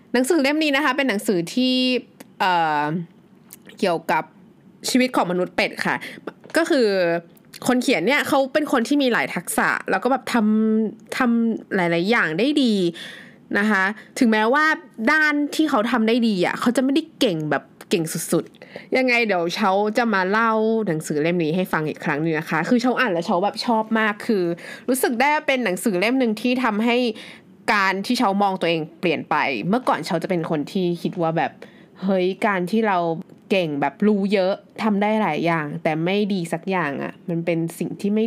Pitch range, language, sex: 180-250 Hz, Thai, female